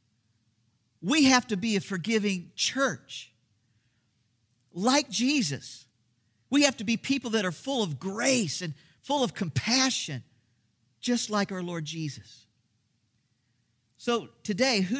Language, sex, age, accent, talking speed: English, male, 50-69, American, 125 wpm